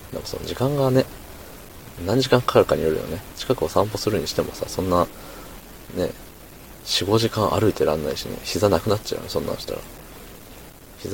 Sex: male